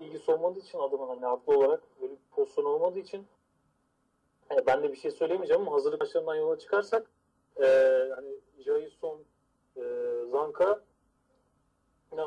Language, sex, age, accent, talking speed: Turkish, male, 40-59, native, 125 wpm